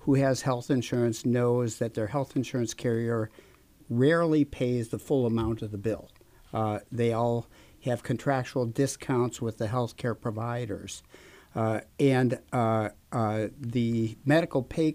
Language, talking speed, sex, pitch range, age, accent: English, 145 wpm, male, 115-135 Hz, 60-79, American